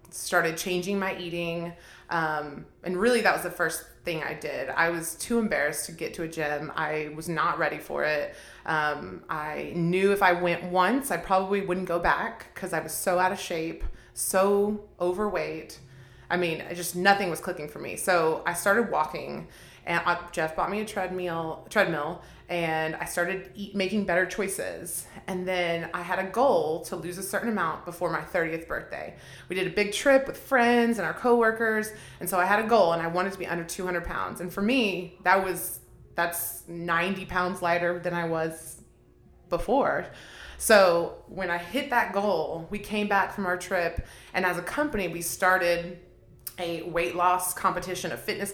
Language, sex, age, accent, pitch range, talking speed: English, female, 30-49, American, 170-195 Hz, 190 wpm